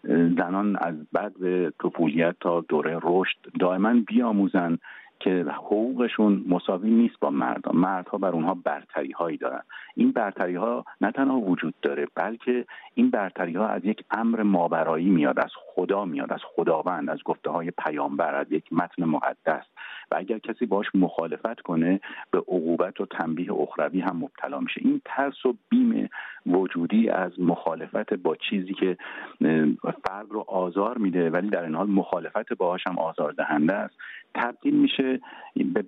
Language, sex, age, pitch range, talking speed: Persian, male, 50-69, 90-120 Hz, 150 wpm